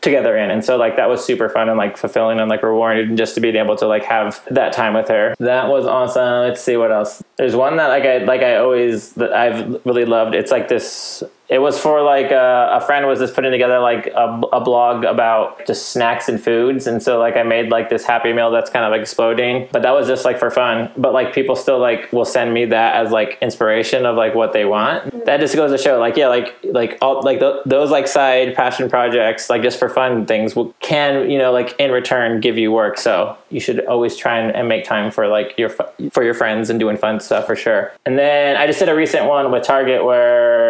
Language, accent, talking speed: English, American, 250 wpm